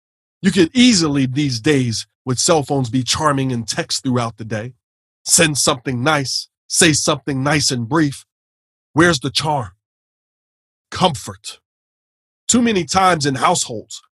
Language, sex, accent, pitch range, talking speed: English, male, American, 115-165 Hz, 135 wpm